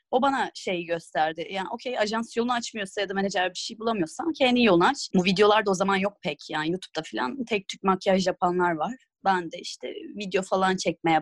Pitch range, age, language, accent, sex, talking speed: 175-245 Hz, 30-49, Turkish, native, female, 205 wpm